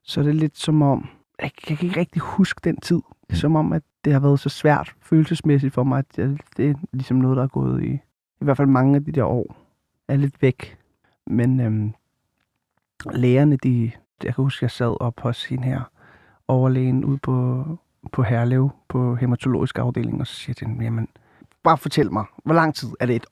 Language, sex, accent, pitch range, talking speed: Danish, male, native, 125-165 Hz, 215 wpm